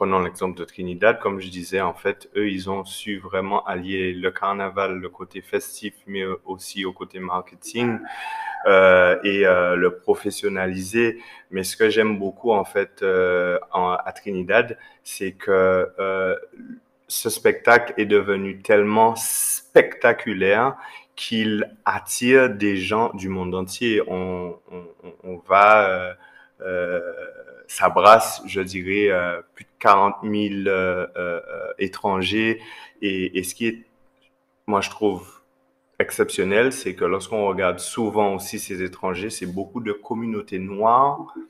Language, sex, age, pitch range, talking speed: French, male, 30-49, 95-130 Hz, 135 wpm